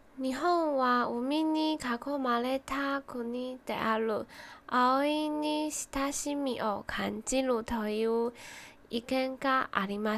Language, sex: Japanese, female